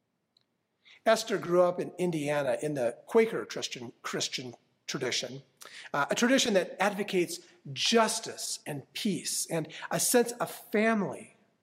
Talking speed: 125 wpm